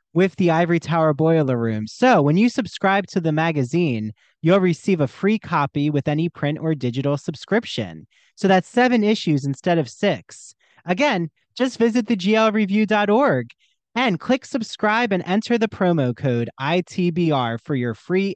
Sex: male